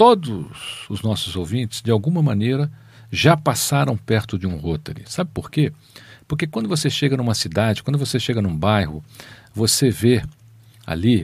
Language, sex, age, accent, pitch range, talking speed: Portuguese, male, 50-69, Brazilian, 105-140 Hz, 160 wpm